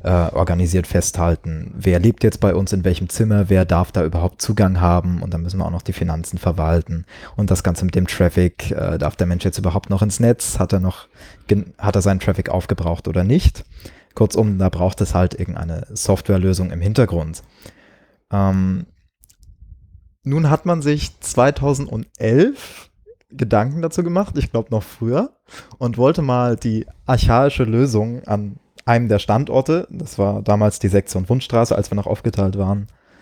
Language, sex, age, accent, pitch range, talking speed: German, male, 20-39, German, 90-110 Hz, 165 wpm